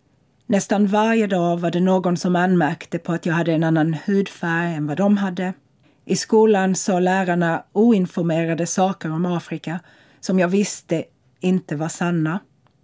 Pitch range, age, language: 160-195 Hz, 40-59, Swedish